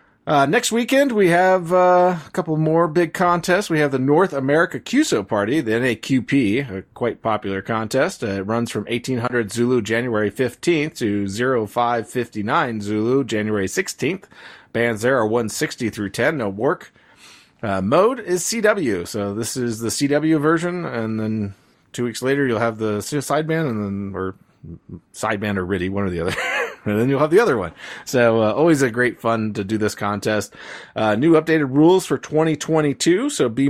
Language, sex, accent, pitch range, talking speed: English, male, American, 110-150 Hz, 175 wpm